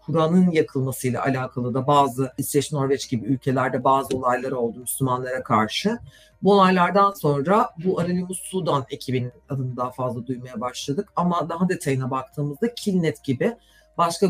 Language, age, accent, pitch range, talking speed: Turkish, 50-69, native, 130-170 Hz, 140 wpm